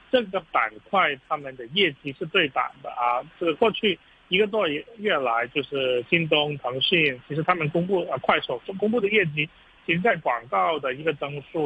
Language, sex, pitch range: Chinese, male, 130-170 Hz